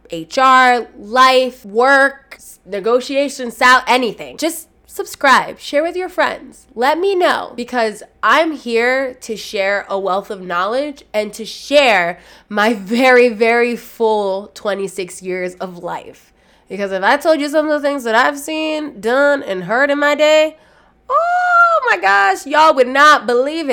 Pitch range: 200-295 Hz